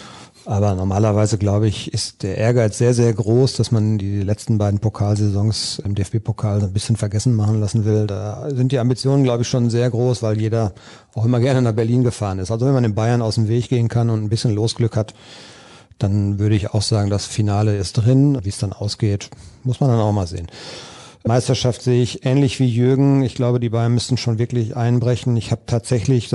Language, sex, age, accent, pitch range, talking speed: German, male, 50-69, German, 110-125 Hz, 215 wpm